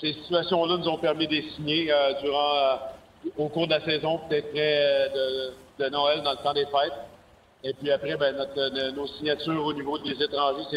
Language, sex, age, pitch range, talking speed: French, male, 50-69, 140-155 Hz, 210 wpm